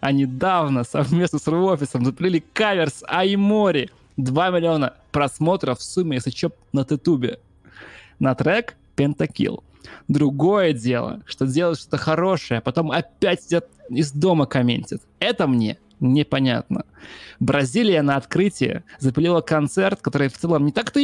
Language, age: Russian, 20-39